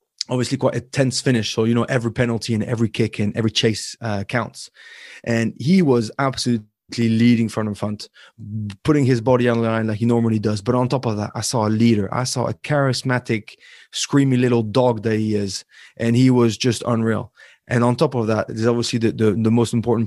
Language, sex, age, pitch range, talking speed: English, male, 20-39, 110-130 Hz, 215 wpm